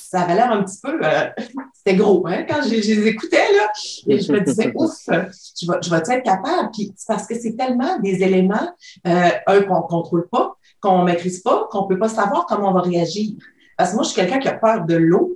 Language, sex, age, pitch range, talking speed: French, female, 40-59, 170-220 Hz, 240 wpm